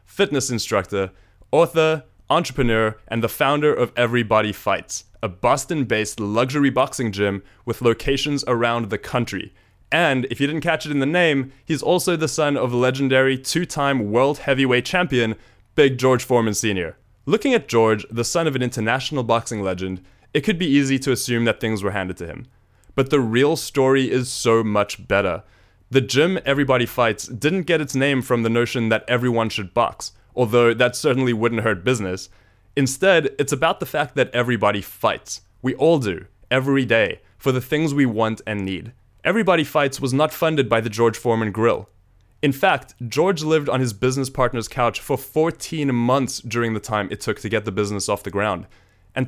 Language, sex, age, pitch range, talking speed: English, male, 20-39, 105-140 Hz, 180 wpm